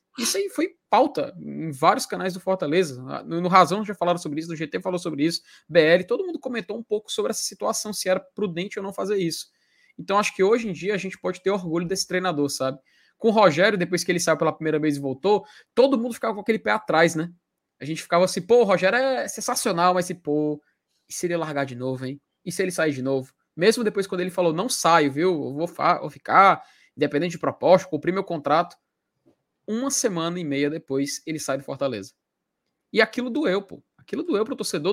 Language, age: Portuguese, 20-39